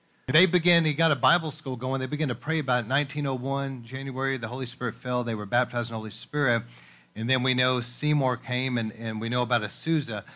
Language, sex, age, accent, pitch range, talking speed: English, male, 40-59, American, 120-155 Hz, 220 wpm